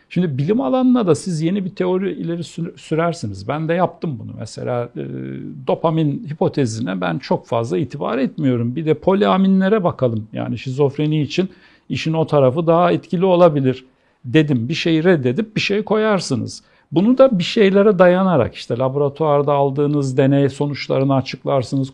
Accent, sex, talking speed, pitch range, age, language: native, male, 145 wpm, 130-175 Hz, 60-79, Turkish